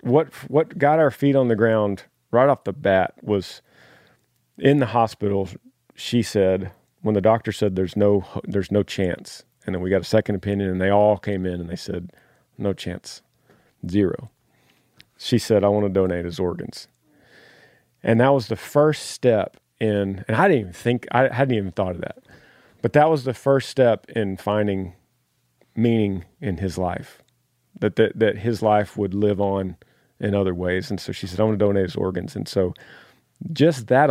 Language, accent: English, American